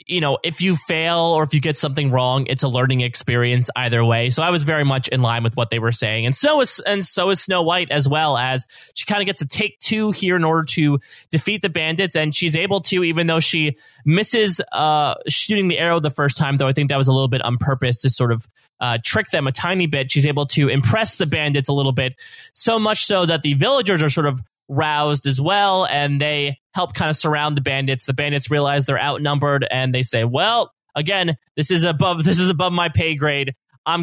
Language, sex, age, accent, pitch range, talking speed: English, male, 20-39, American, 135-180 Hz, 240 wpm